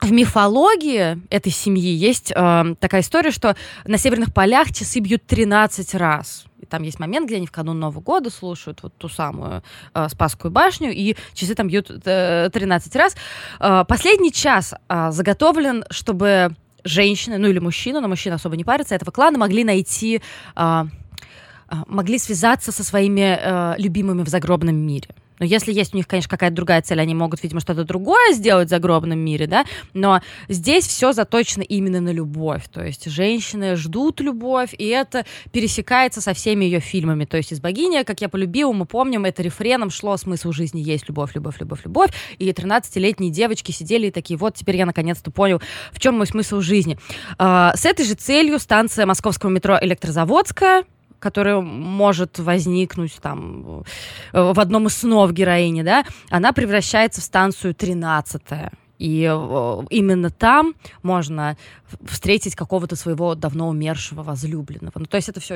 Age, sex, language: 20-39, female, Russian